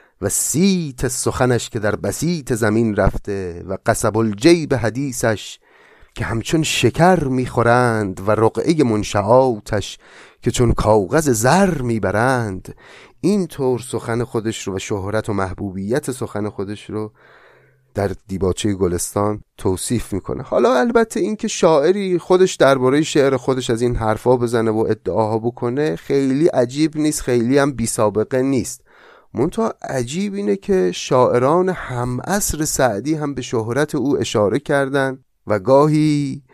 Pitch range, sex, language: 105-140 Hz, male, Persian